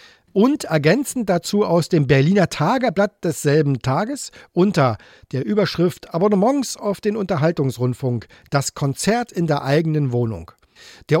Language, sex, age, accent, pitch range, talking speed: German, male, 40-59, German, 140-205 Hz, 125 wpm